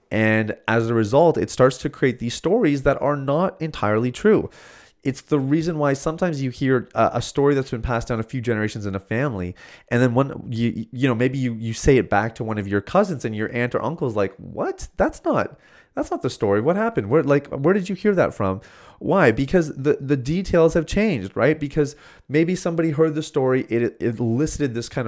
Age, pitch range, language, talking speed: 30-49, 110-145 Hz, English, 225 wpm